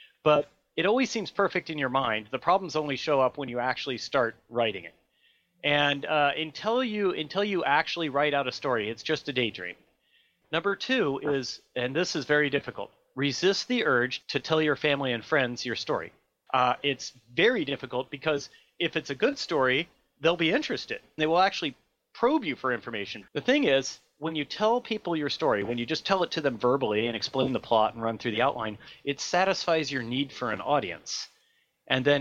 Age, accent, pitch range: 30-49, American, 130-180 Hz